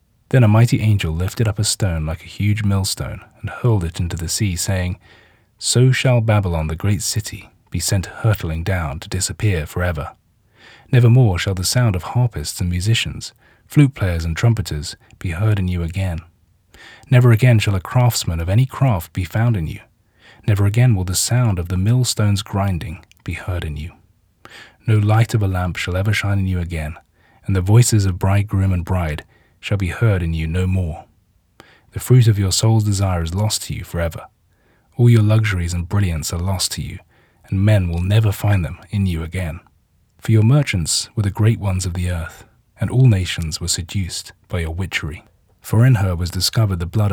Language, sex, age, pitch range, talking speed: English, male, 30-49, 90-110 Hz, 195 wpm